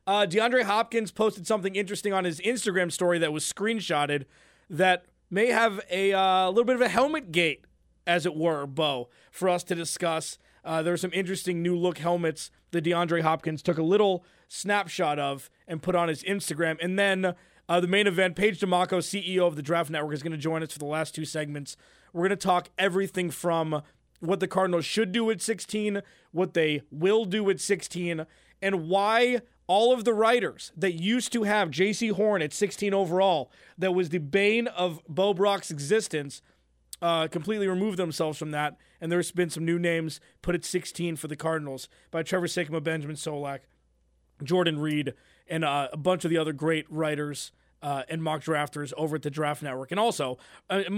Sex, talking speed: male, 190 wpm